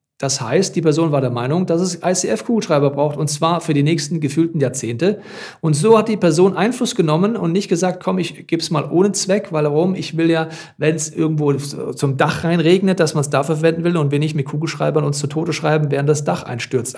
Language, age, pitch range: German, 40-59, 150-185 Hz